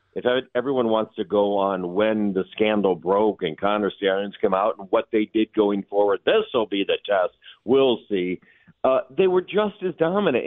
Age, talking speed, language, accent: 50-69, 195 wpm, English, American